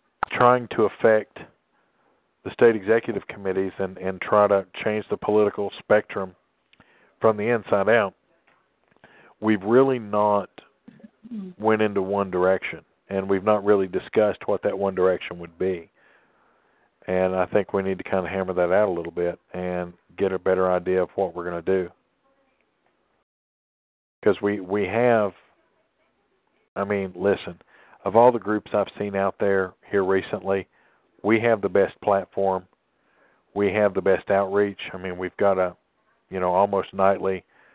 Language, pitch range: English, 95-105 Hz